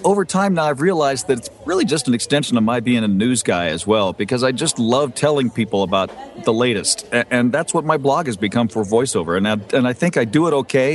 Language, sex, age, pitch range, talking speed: English, male, 50-69, 115-140 Hz, 260 wpm